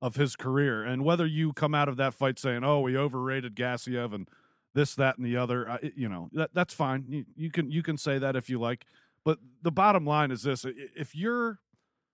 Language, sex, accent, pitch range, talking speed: English, male, American, 125-165 Hz, 215 wpm